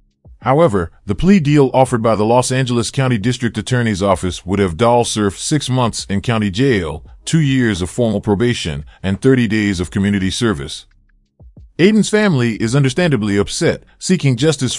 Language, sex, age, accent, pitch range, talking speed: English, male, 30-49, American, 100-130 Hz, 160 wpm